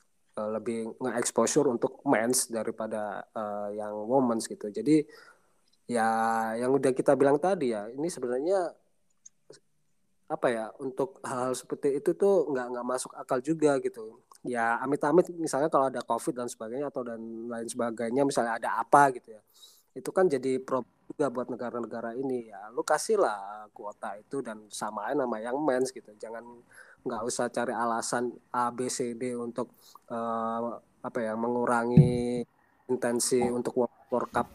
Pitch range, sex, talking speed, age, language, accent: 115-135 Hz, male, 155 wpm, 20-39, Indonesian, native